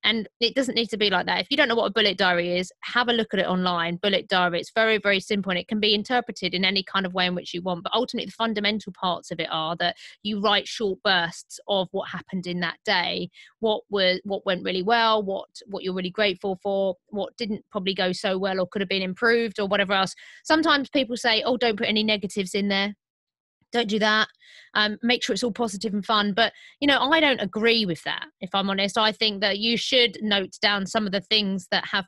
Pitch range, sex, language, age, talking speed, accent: 185-225 Hz, female, English, 20-39, 250 wpm, British